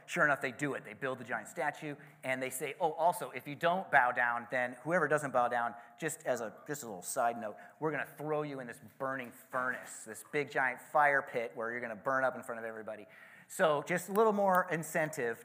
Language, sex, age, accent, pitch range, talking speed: English, male, 30-49, American, 120-150 Hz, 235 wpm